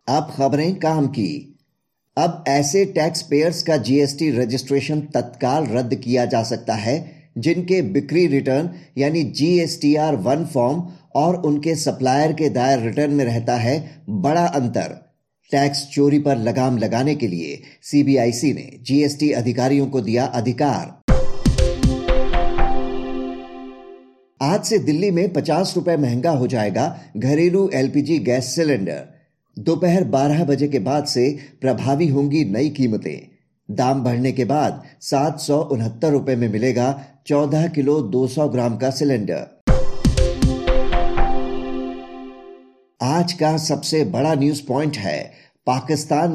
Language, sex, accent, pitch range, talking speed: Hindi, male, native, 125-155 Hz, 125 wpm